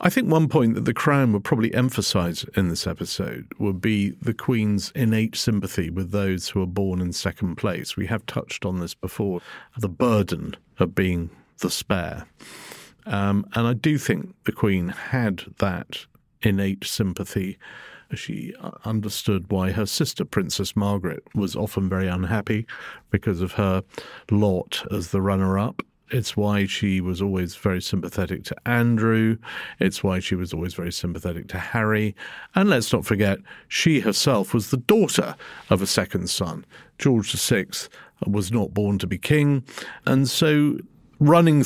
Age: 50-69